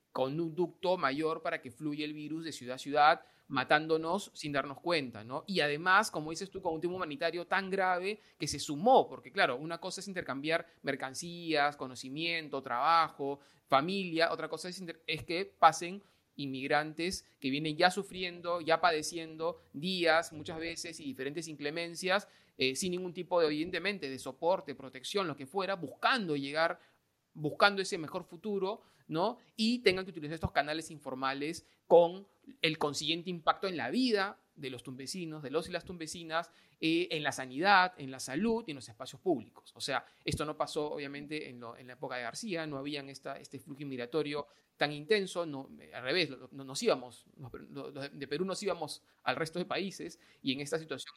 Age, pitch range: 30-49, 140-175 Hz